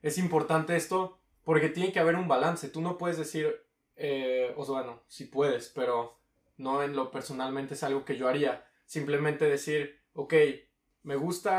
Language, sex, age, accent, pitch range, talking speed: Spanish, male, 20-39, Mexican, 145-170 Hz, 180 wpm